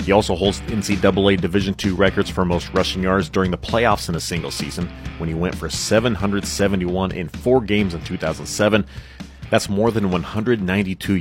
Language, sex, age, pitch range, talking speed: English, male, 30-49, 90-105 Hz, 170 wpm